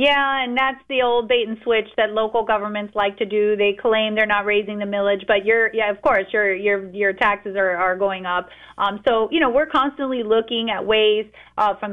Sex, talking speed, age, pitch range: female, 225 wpm, 30-49, 200-230 Hz